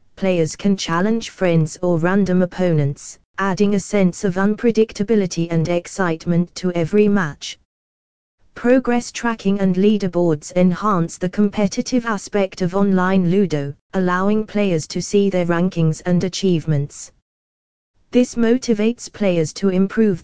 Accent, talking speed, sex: British, 120 wpm, female